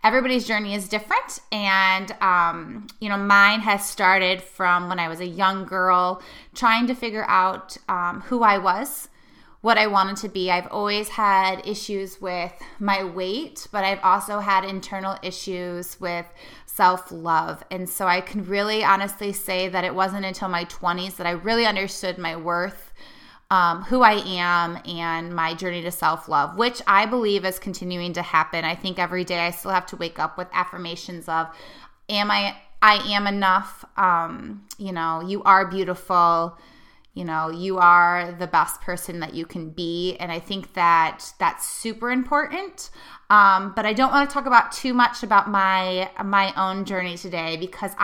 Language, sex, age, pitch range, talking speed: English, female, 20-39, 180-210 Hz, 175 wpm